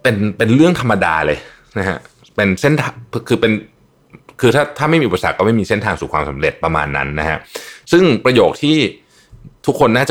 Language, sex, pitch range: Thai, male, 85-125 Hz